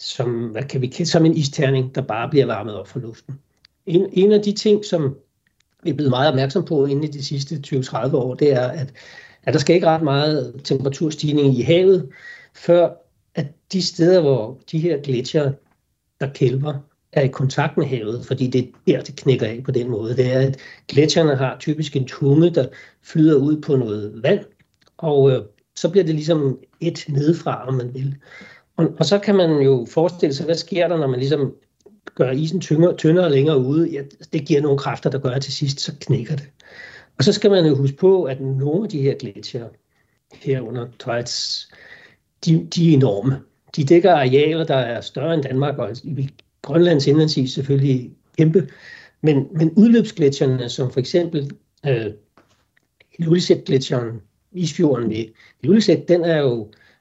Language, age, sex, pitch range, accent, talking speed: Danish, 60-79, male, 130-165 Hz, native, 180 wpm